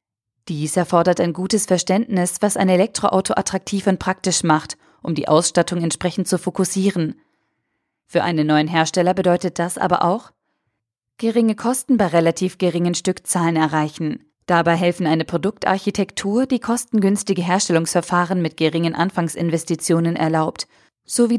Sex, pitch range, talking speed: female, 165-200 Hz, 125 wpm